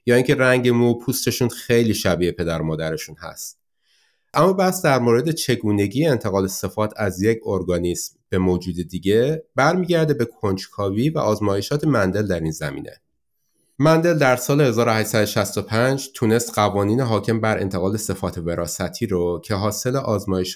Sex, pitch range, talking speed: male, 95-130 Hz, 140 wpm